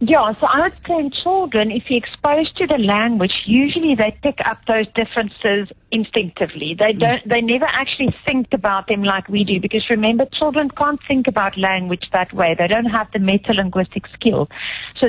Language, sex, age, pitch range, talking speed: English, female, 50-69, 200-240 Hz, 185 wpm